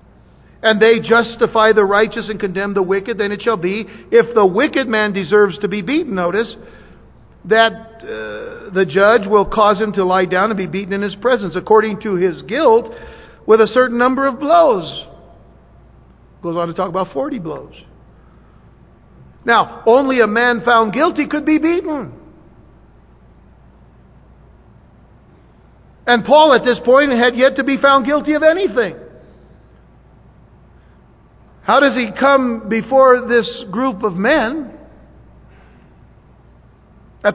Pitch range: 190-245 Hz